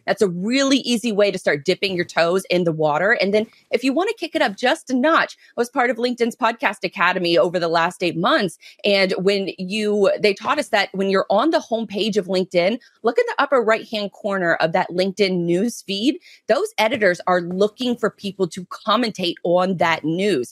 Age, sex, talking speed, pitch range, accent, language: 30-49, female, 215 wpm, 175-235 Hz, American, English